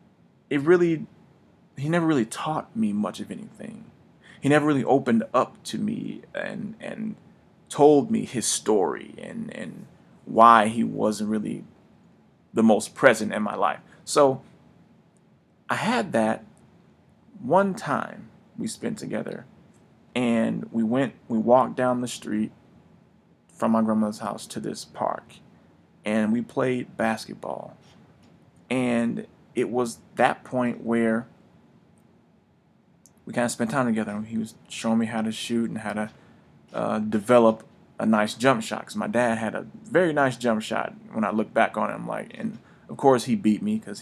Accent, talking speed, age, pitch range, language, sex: American, 155 wpm, 30-49, 110-145 Hz, English, male